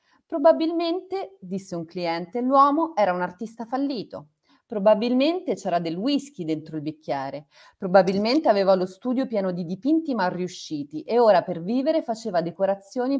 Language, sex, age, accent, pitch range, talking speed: Italian, female, 30-49, native, 170-260 Hz, 140 wpm